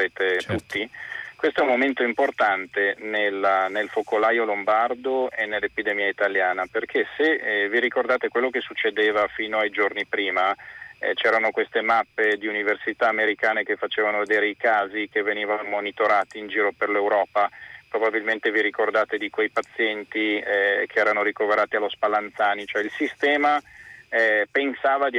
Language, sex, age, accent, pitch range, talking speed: Italian, male, 30-49, native, 105-125 Hz, 150 wpm